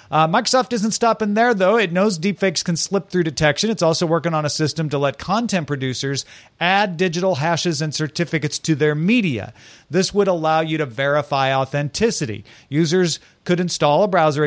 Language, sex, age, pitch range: English, male, 40-59, 145-190 Hz